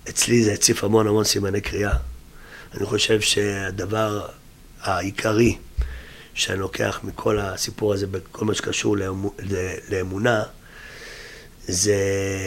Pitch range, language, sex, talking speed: 95-110 Hz, Hebrew, male, 100 wpm